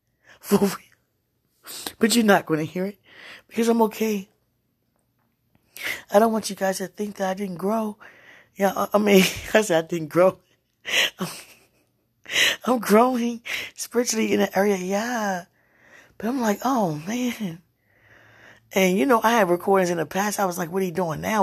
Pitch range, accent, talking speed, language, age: 175-225 Hz, American, 165 wpm, English, 20-39